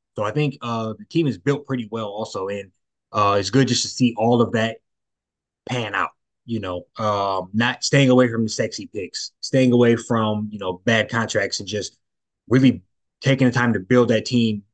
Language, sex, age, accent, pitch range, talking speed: English, male, 20-39, American, 105-125 Hz, 205 wpm